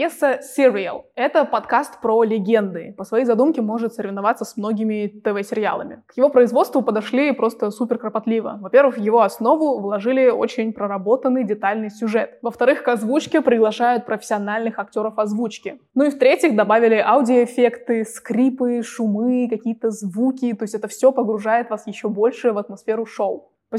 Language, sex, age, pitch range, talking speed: Russian, female, 20-39, 210-250 Hz, 145 wpm